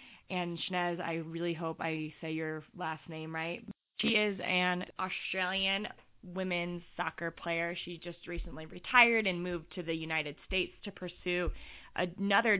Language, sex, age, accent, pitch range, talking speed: English, female, 20-39, American, 160-180 Hz, 150 wpm